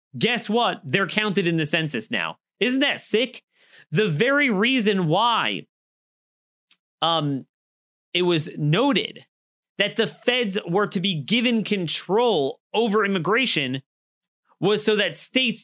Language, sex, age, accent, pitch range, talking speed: English, male, 30-49, American, 155-215 Hz, 125 wpm